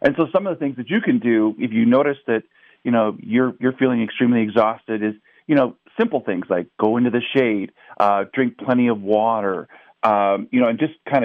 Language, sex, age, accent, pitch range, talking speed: English, male, 40-59, American, 105-130 Hz, 225 wpm